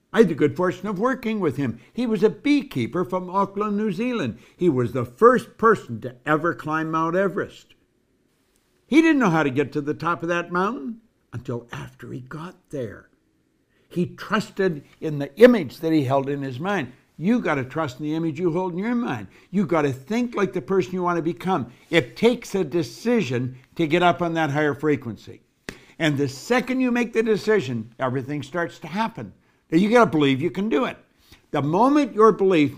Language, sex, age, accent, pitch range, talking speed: English, male, 60-79, American, 140-215 Hz, 200 wpm